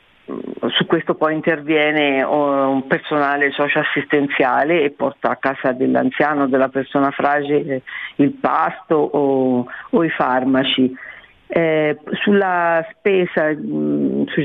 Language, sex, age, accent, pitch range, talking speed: Italian, female, 50-69, native, 145-180 Hz, 105 wpm